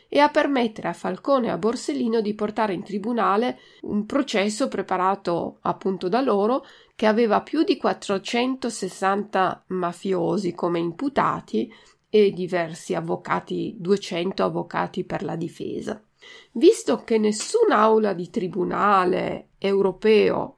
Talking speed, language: 115 wpm, Italian